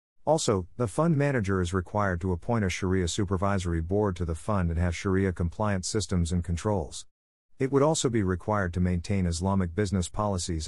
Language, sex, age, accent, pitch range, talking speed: English, male, 50-69, American, 90-115 Hz, 175 wpm